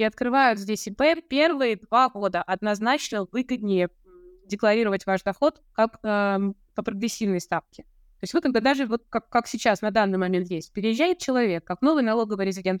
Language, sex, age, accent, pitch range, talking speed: Russian, female, 20-39, native, 180-240 Hz, 165 wpm